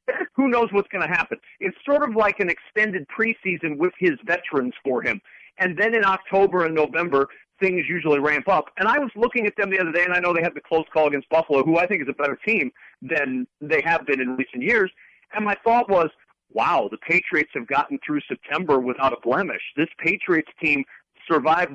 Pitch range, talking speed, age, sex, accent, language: 135-185 Hz, 220 wpm, 50-69, male, American, English